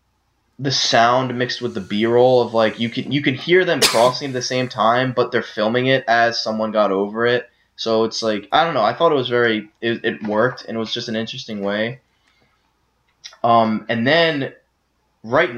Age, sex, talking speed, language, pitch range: 10-29, male, 205 wpm, English, 115-140 Hz